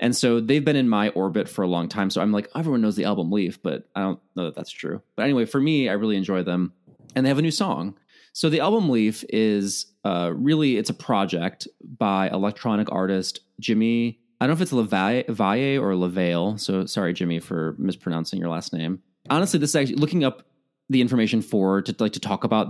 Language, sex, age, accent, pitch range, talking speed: English, male, 30-49, American, 90-130 Hz, 220 wpm